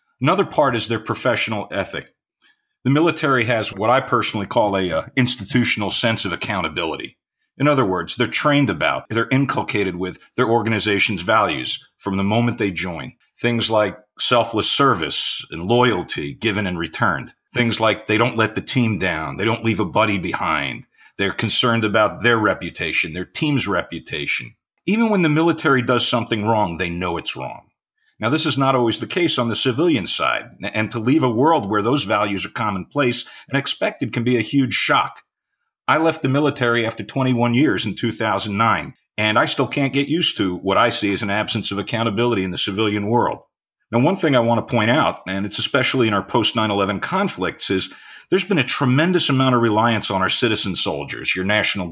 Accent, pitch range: American, 100-130 Hz